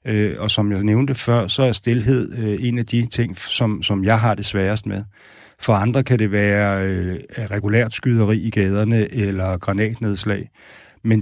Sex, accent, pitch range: male, native, 105-120 Hz